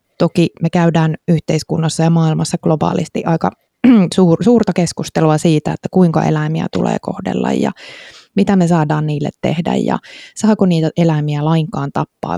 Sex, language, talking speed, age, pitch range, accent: female, Finnish, 135 wpm, 20-39, 160-195 Hz, native